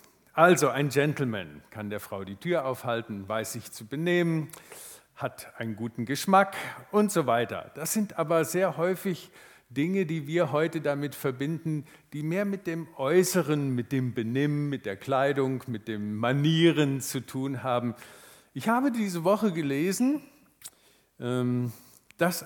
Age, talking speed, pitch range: 50-69, 145 wpm, 120-175 Hz